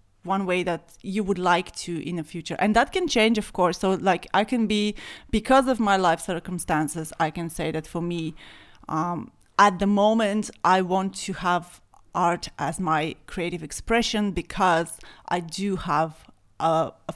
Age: 30-49